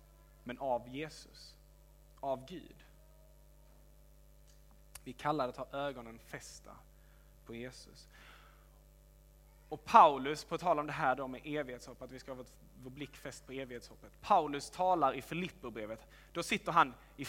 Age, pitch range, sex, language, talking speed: 20-39, 130-155 Hz, male, Swedish, 140 wpm